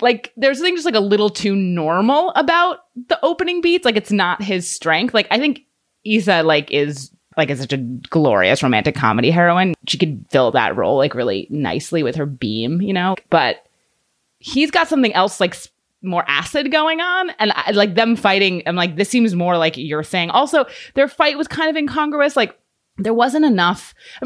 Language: English